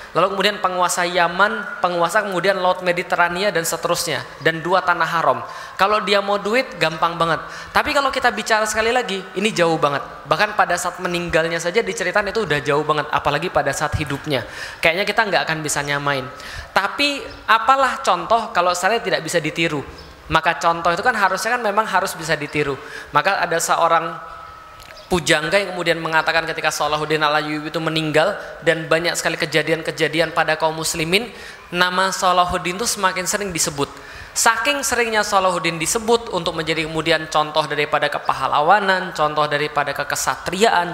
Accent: native